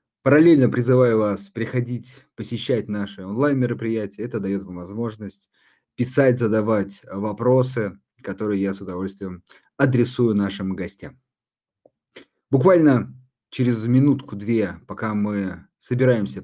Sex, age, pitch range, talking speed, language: male, 30-49, 100-130 Hz, 100 wpm, Russian